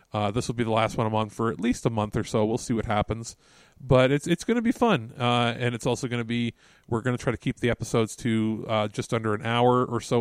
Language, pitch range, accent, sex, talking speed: English, 115-135 Hz, American, male, 295 wpm